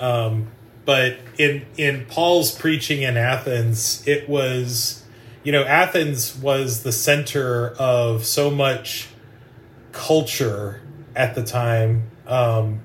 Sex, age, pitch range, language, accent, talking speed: male, 30-49, 120-140 Hz, English, American, 110 wpm